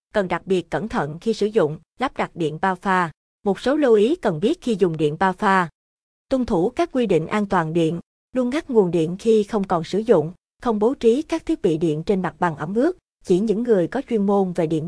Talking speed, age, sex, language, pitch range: 245 wpm, 20-39, female, Vietnamese, 185-230 Hz